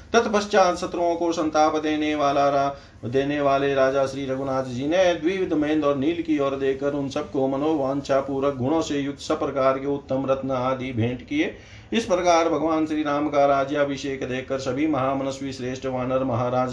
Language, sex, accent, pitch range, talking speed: Hindi, male, native, 130-155 Hz, 165 wpm